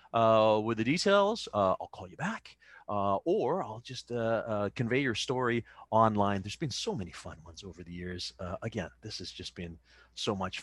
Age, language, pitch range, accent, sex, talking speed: 30-49, English, 105-155 Hz, American, male, 205 wpm